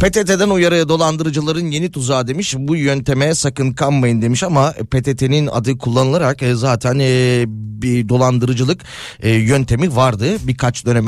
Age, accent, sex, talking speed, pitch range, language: 30-49, native, male, 120 wpm, 125-160 Hz, Turkish